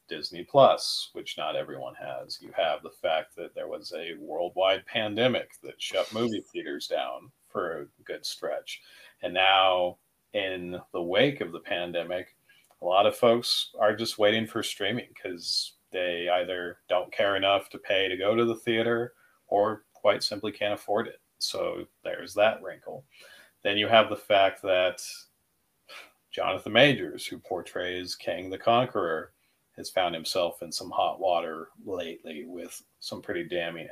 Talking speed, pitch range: 160 wpm, 90-120 Hz